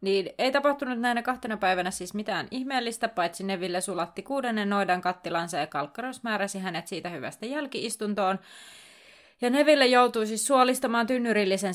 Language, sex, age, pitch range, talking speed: Finnish, female, 30-49, 185-240 Hz, 145 wpm